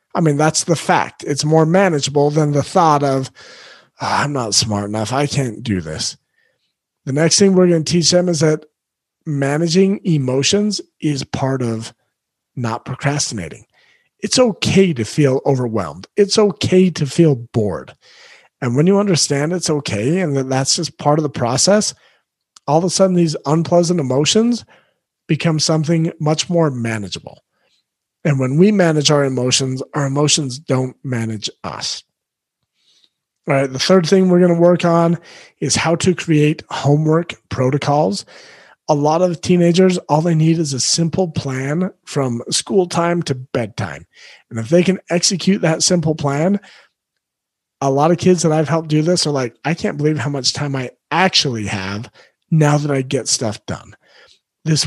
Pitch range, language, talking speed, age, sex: 135-175 Hz, English, 165 wpm, 40-59, male